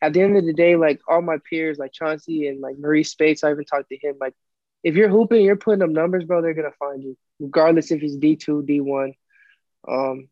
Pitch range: 140-170 Hz